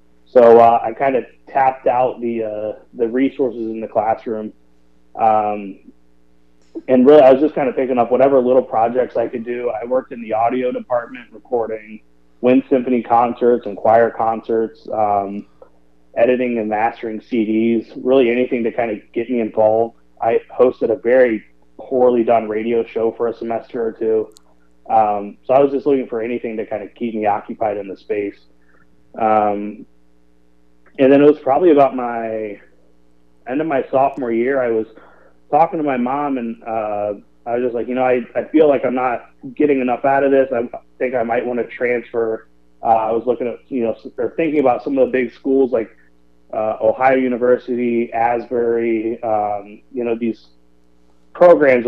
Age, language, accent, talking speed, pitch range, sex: 30-49, English, American, 180 wpm, 105-125 Hz, male